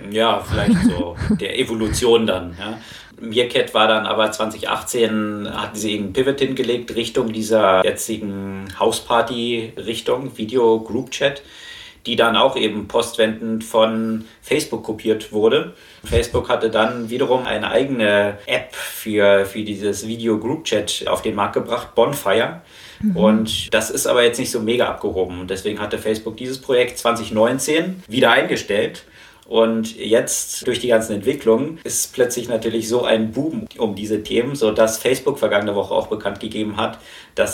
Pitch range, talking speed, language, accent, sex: 105-115 Hz, 145 wpm, German, German, male